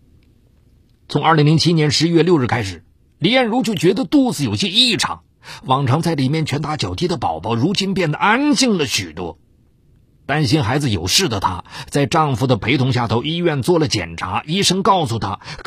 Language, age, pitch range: Chinese, 50-69, 120-190 Hz